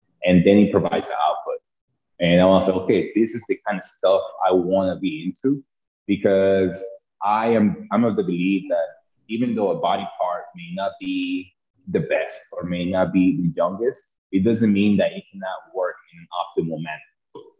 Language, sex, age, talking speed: English, male, 20-39, 190 wpm